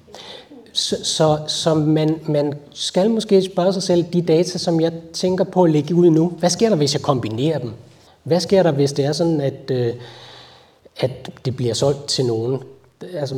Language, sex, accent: Danish, male, native